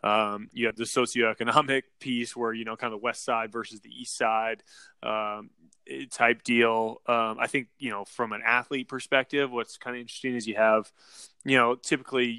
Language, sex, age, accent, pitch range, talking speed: English, male, 20-39, American, 110-130 Hz, 190 wpm